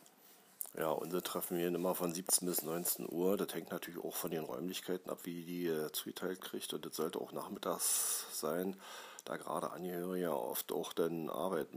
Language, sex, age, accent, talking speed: German, male, 40-59, German, 185 wpm